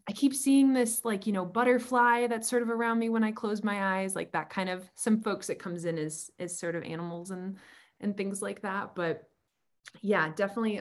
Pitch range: 165-210 Hz